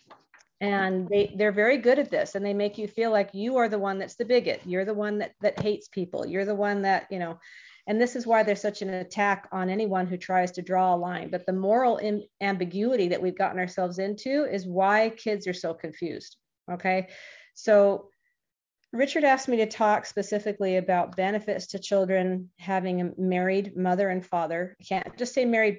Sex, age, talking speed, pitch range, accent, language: female, 40-59, 200 wpm, 180-210 Hz, American, English